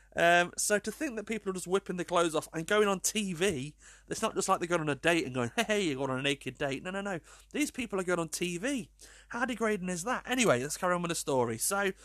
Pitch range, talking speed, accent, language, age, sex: 120-180 Hz, 275 wpm, British, English, 30-49, male